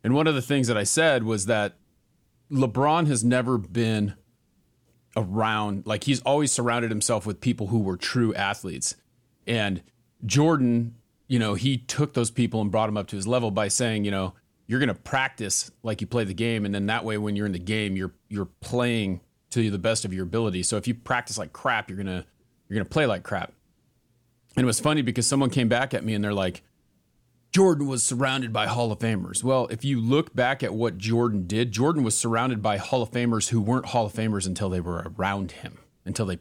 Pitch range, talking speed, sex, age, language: 105-125 Hz, 220 wpm, male, 30-49, English